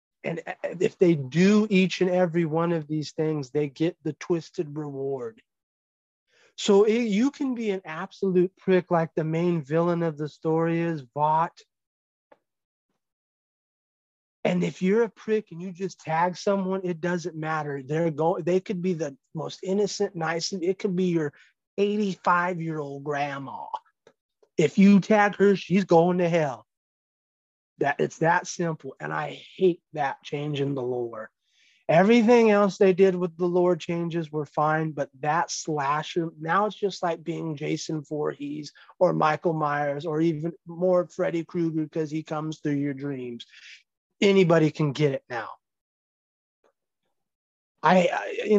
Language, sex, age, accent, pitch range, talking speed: English, male, 30-49, American, 155-190 Hz, 150 wpm